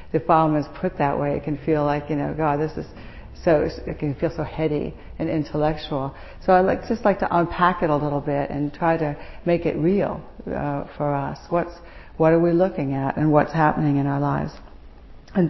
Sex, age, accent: female, 60-79, American